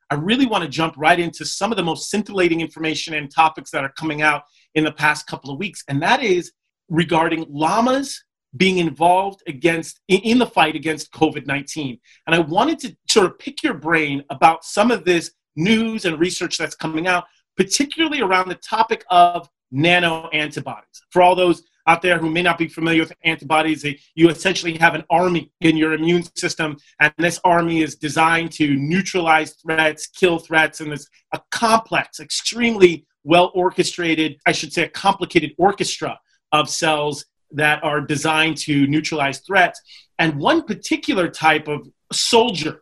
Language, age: English, 30-49